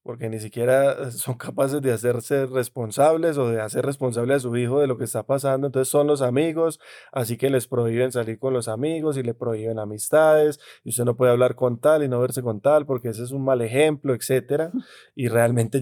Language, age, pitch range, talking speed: Spanish, 20-39, 115-135 Hz, 215 wpm